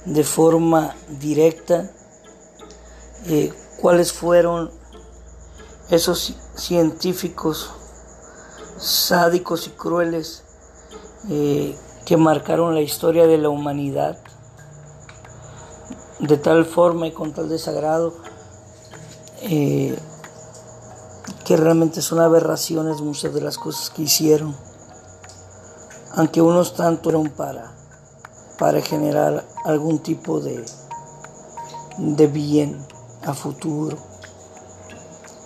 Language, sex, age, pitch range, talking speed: Spanish, male, 50-69, 145-165 Hz, 85 wpm